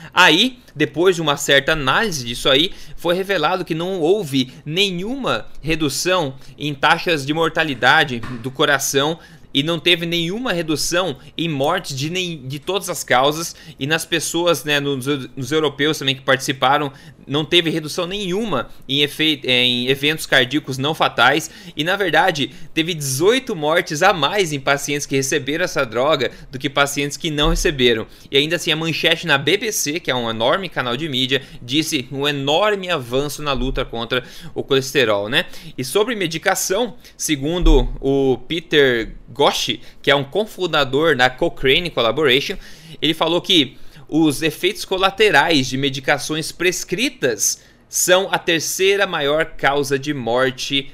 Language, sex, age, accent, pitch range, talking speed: Portuguese, male, 20-39, Brazilian, 135-170 Hz, 150 wpm